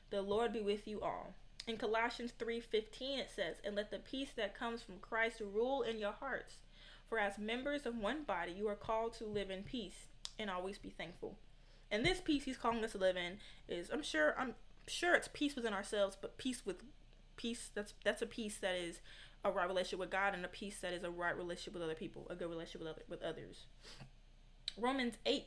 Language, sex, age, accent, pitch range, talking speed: English, female, 20-39, American, 195-240 Hz, 215 wpm